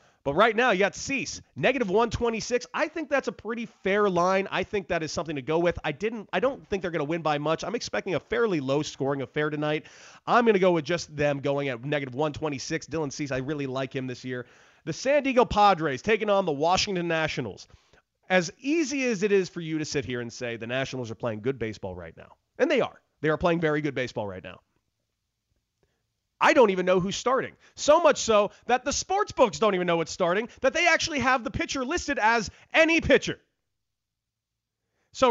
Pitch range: 130-210 Hz